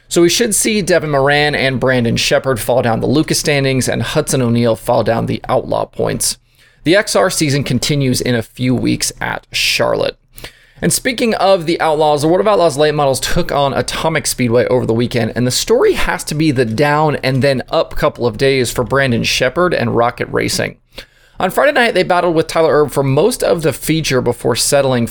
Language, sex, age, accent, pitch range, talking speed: English, male, 30-49, American, 125-170 Hz, 205 wpm